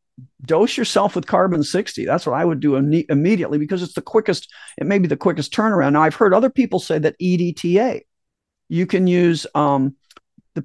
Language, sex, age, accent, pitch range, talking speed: English, male, 50-69, American, 155-215 Hz, 195 wpm